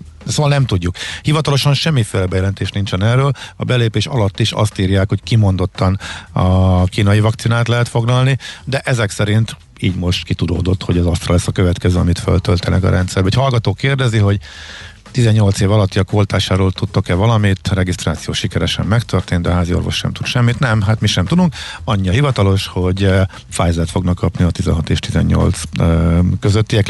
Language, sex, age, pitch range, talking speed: Hungarian, male, 50-69, 90-115 Hz, 165 wpm